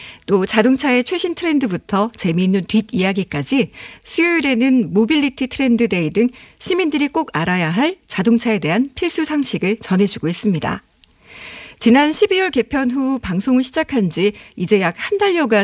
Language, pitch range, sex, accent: Korean, 200-275 Hz, female, native